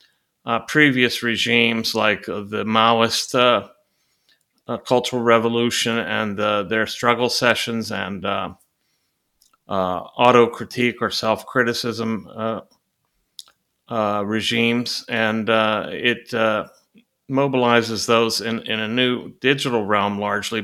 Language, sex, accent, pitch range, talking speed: English, male, American, 110-125 Hz, 105 wpm